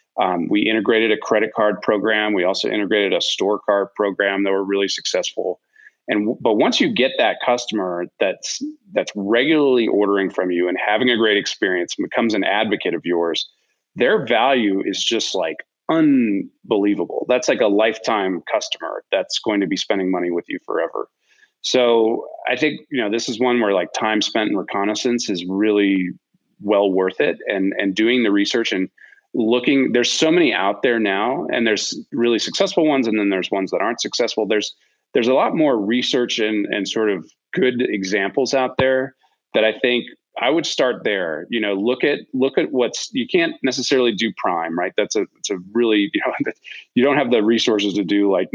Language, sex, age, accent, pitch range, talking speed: English, male, 30-49, American, 100-130 Hz, 190 wpm